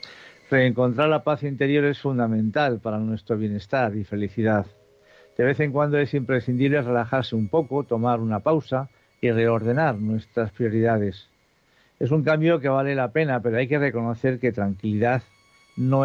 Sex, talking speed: male, 155 wpm